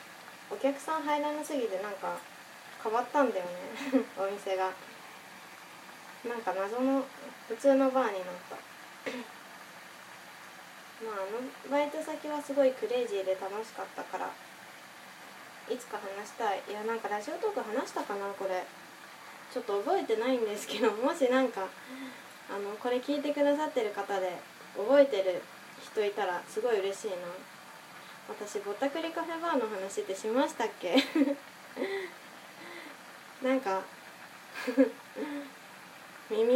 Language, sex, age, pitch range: Japanese, female, 20-39, 195-280 Hz